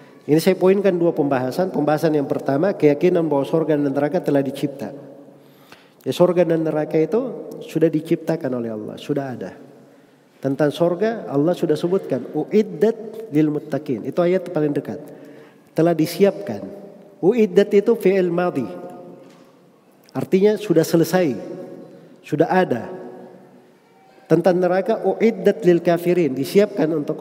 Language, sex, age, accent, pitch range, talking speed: Indonesian, male, 40-59, native, 150-200 Hz, 120 wpm